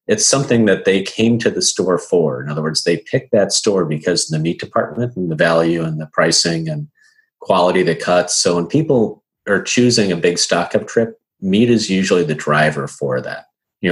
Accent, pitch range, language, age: American, 80-110 Hz, English, 40-59